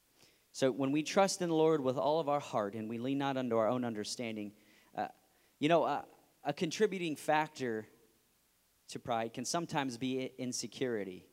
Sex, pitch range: male, 110-150 Hz